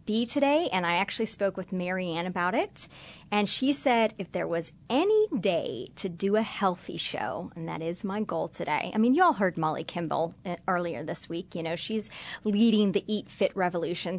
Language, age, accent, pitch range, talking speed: English, 30-49, American, 175-215 Hz, 195 wpm